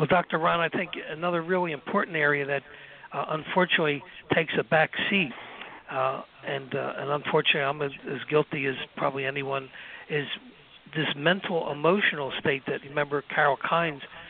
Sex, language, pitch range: male, English, 140-165 Hz